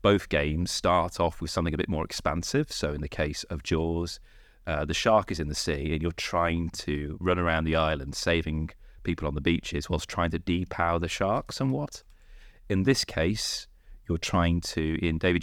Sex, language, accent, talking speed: male, English, British, 200 wpm